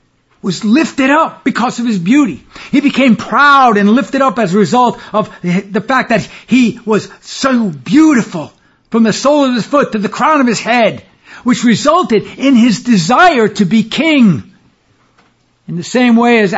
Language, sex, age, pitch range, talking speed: English, male, 60-79, 185-240 Hz, 175 wpm